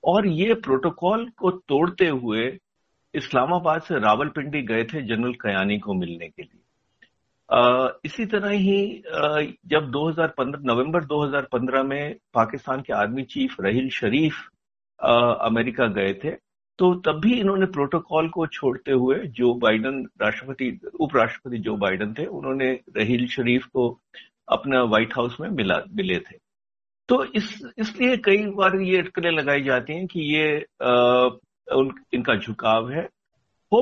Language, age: Hindi, 60-79